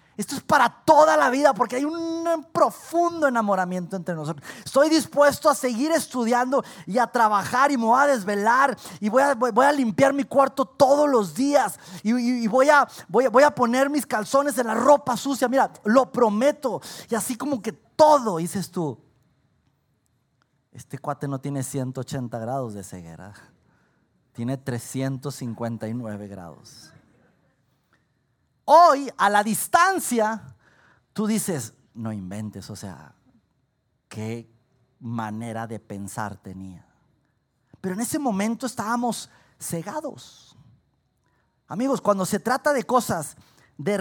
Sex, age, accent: male, 30-49, Mexican